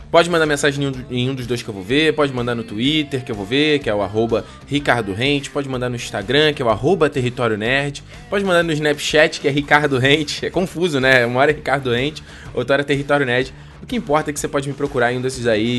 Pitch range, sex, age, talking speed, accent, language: 120-165 Hz, male, 20-39, 260 wpm, Brazilian, Portuguese